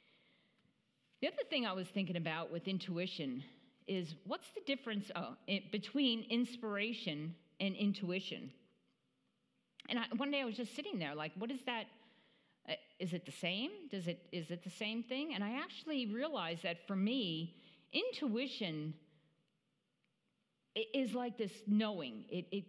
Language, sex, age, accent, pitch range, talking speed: English, female, 50-69, American, 175-230 Hz, 155 wpm